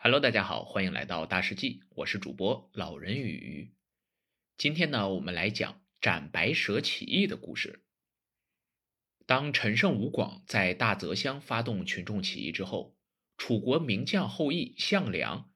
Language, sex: Chinese, male